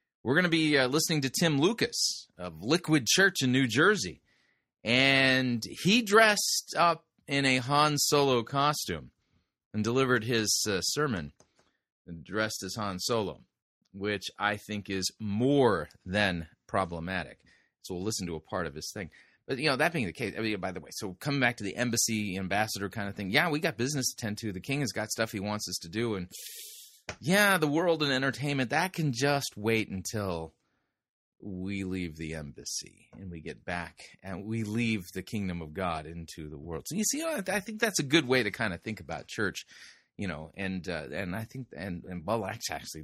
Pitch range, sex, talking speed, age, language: 95-135 Hz, male, 200 wpm, 30-49, English